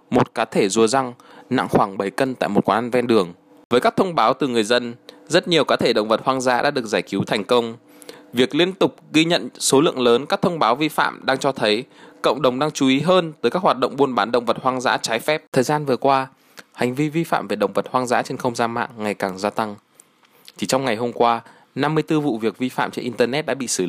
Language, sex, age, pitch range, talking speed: Vietnamese, male, 20-39, 110-145 Hz, 265 wpm